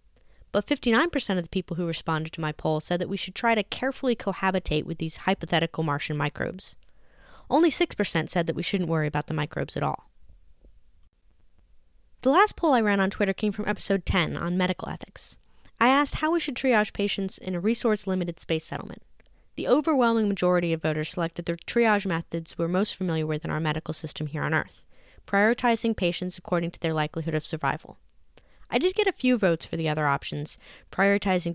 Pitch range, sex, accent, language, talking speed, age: 155-210 Hz, female, American, English, 190 wpm, 20-39